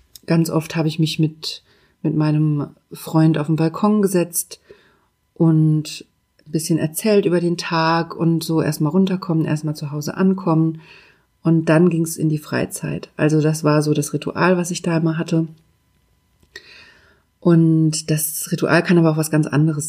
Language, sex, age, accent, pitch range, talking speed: German, female, 30-49, German, 155-170 Hz, 165 wpm